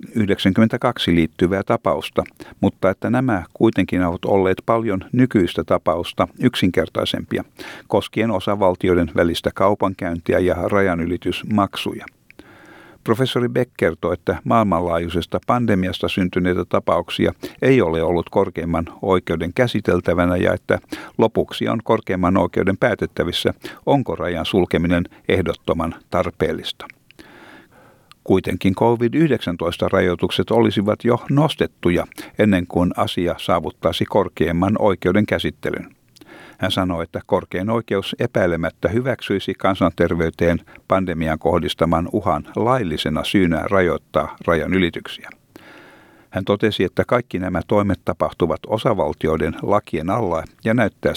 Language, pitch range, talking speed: Finnish, 90-110 Hz, 100 wpm